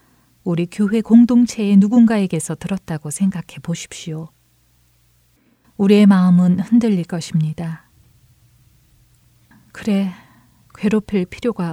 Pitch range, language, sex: 130-200 Hz, Korean, female